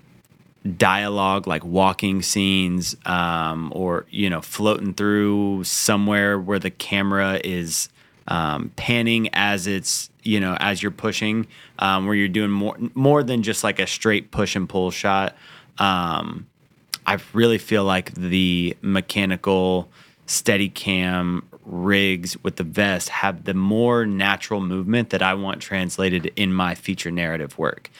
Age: 30-49